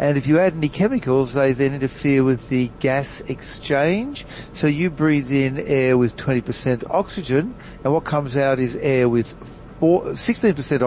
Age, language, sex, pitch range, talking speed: 60-79, English, male, 125-155 Hz, 160 wpm